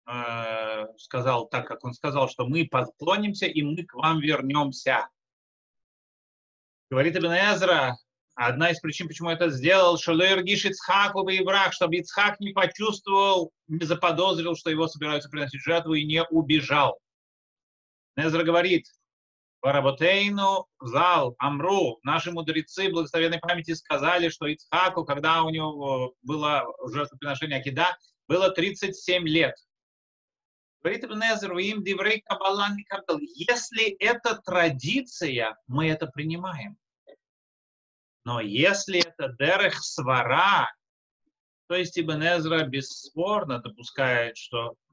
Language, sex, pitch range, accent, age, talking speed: Russian, male, 130-180 Hz, native, 30-49, 105 wpm